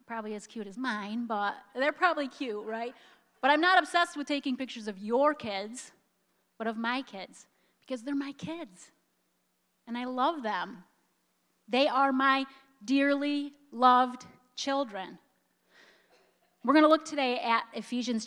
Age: 30-49